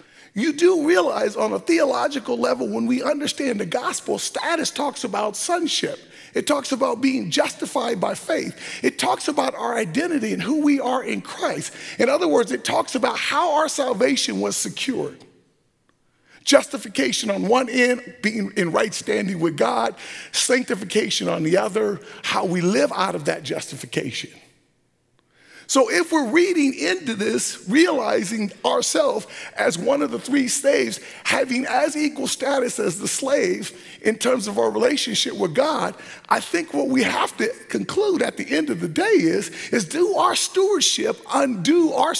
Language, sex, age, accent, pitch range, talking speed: English, male, 40-59, American, 245-315 Hz, 160 wpm